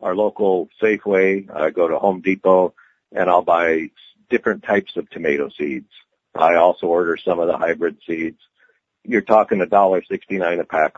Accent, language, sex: American, English, male